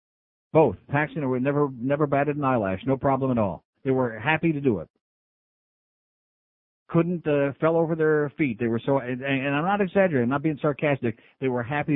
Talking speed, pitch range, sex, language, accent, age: 195 wpm, 130-160 Hz, male, English, American, 50-69